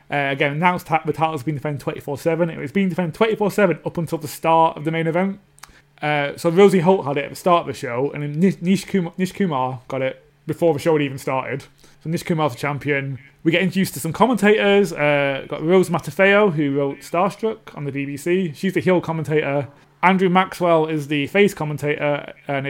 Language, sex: English, male